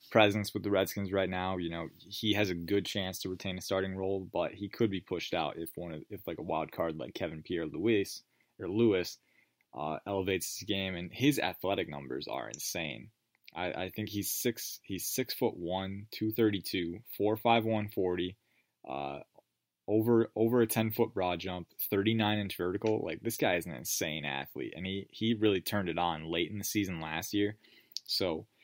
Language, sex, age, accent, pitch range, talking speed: English, male, 20-39, American, 90-110 Hz, 200 wpm